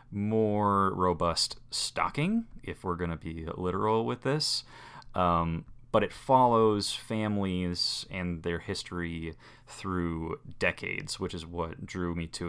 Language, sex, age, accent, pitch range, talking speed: English, male, 30-49, American, 85-110 Hz, 125 wpm